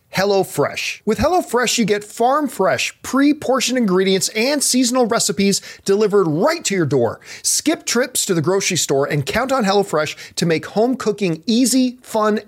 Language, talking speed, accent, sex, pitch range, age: English, 160 wpm, American, male, 160-230 Hz, 40-59